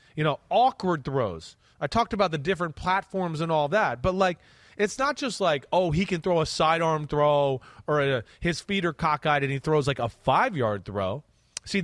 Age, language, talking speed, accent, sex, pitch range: 30-49, English, 200 wpm, American, male, 135-195 Hz